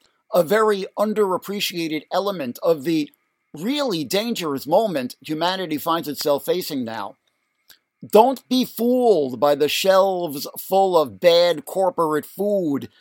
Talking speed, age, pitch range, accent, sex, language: 115 wpm, 50-69, 155-205 Hz, American, male, English